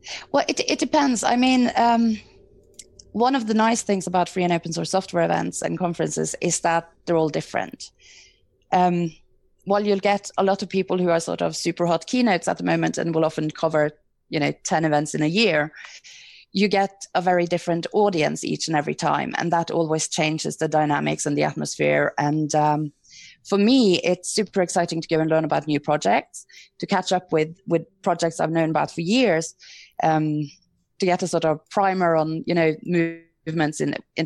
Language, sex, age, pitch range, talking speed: English, female, 20-39, 155-190 Hz, 195 wpm